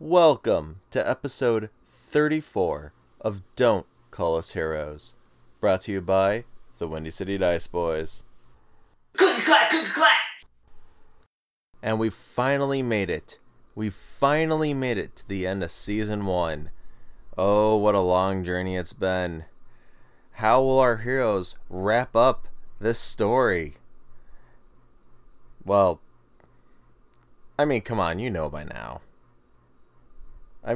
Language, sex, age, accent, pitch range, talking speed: English, male, 20-39, American, 95-125 Hz, 115 wpm